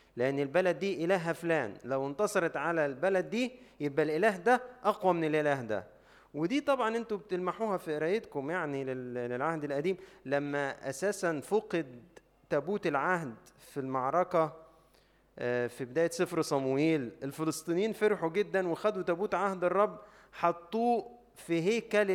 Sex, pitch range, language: male, 150-190 Hz, Arabic